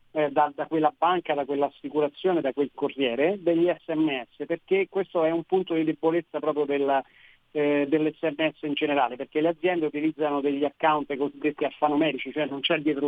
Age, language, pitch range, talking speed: 40-59, Italian, 140-170 Hz, 165 wpm